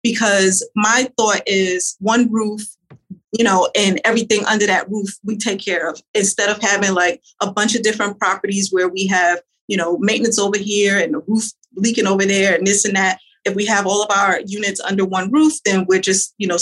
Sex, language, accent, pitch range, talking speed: female, English, American, 190-225 Hz, 215 wpm